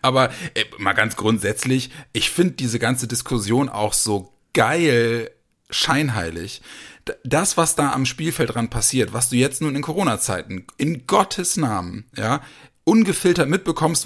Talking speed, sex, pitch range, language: 140 wpm, male, 120-150 Hz, German